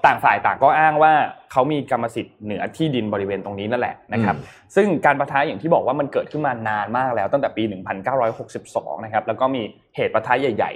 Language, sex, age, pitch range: Thai, male, 20-39, 110-155 Hz